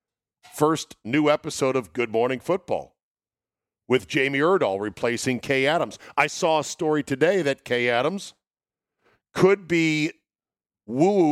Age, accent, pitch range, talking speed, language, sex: 50-69, American, 115-150 Hz, 125 wpm, English, male